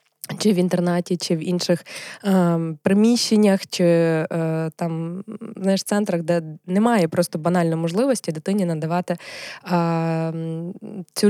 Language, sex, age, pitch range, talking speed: Ukrainian, female, 20-39, 170-205 Hz, 115 wpm